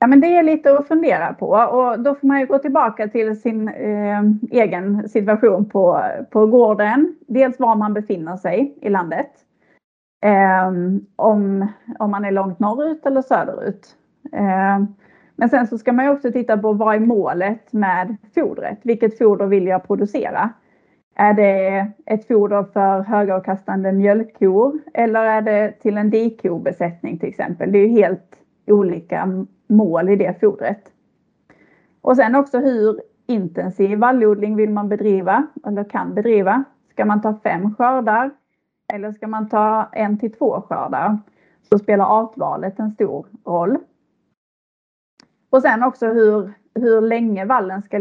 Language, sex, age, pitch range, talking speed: Swedish, female, 30-49, 205-245 Hz, 150 wpm